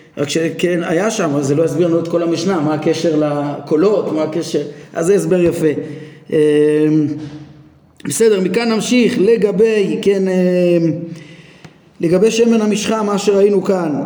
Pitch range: 165-205 Hz